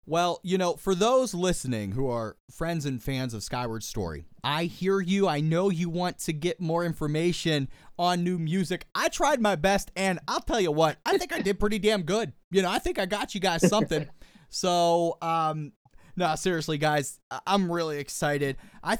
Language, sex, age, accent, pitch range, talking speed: English, male, 30-49, American, 140-180 Hz, 195 wpm